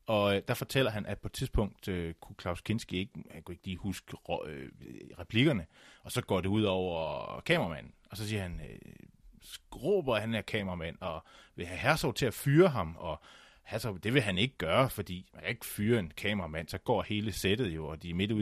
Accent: native